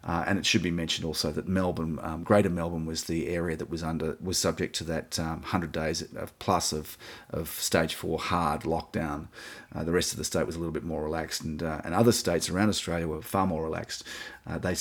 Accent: Australian